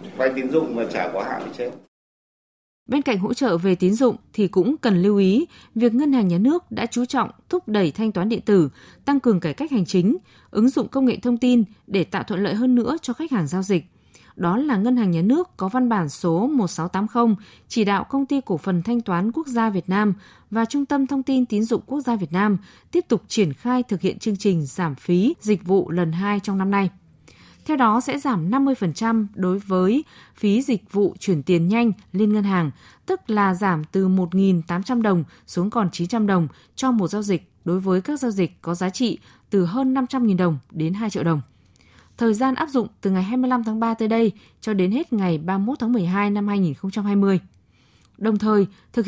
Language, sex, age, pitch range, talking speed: Vietnamese, female, 20-39, 185-240 Hz, 210 wpm